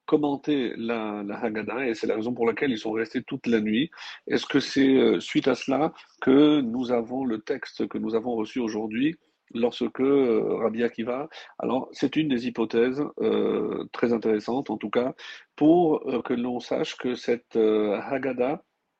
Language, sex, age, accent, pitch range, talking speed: French, male, 40-59, French, 115-145 Hz, 180 wpm